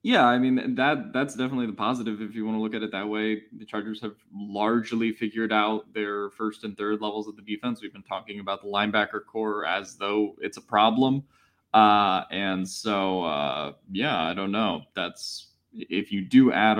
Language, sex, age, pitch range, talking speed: English, male, 20-39, 100-130 Hz, 200 wpm